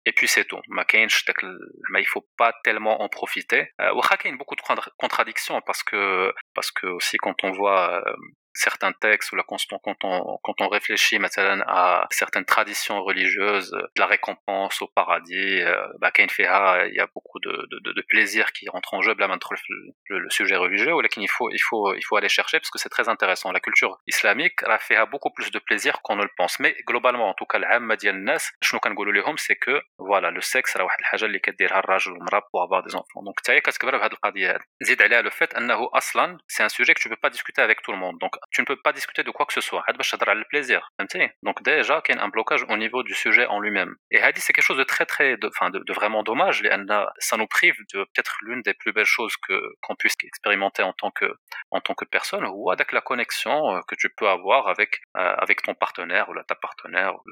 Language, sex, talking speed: Arabic, male, 210 wpm